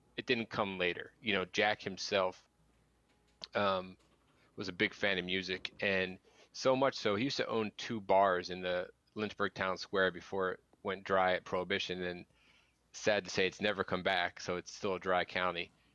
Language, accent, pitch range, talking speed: English, American, 90-100 Hz, 190 wpm